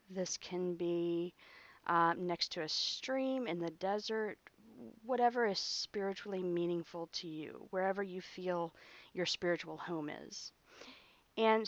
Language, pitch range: English, 175-220 Hz